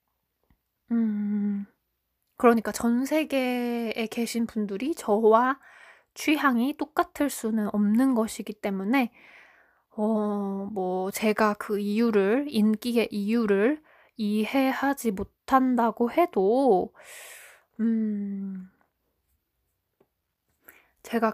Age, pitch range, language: 20-39, 210-250 Hz, Korean